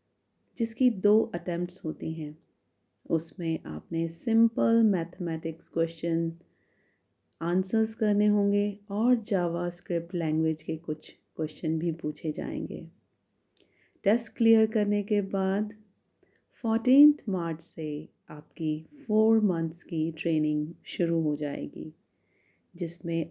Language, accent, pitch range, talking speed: Hindi, native, 160-195 Hz, 105 wpm